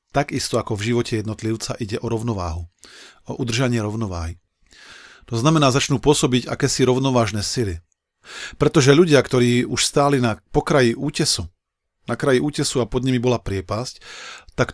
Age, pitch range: 40-59, 110-150 Hz